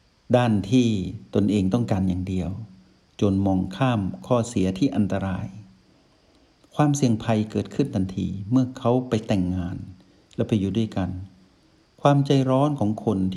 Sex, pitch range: male, 95-115 Hz